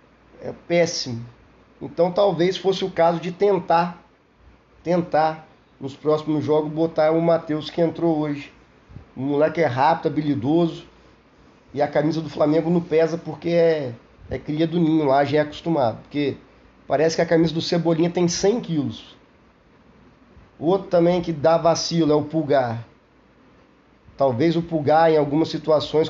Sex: male